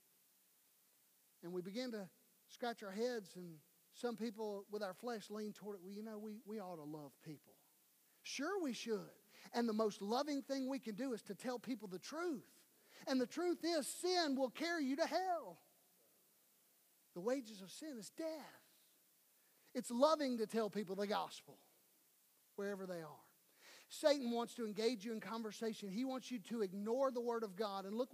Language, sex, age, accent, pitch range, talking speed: English, male, 40-59, American, 210-270 Hz, 185 wpm